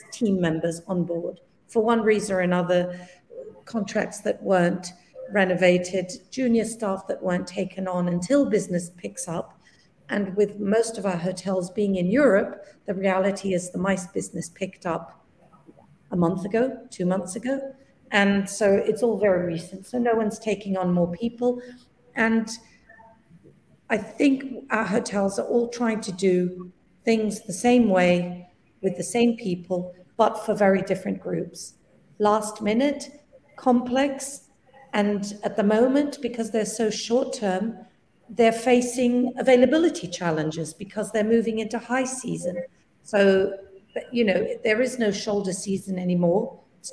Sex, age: female, 50-69